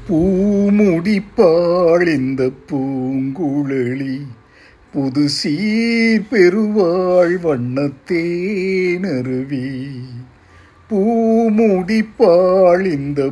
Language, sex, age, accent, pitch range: Tamil, male, 50-69, native, 140-205 Hz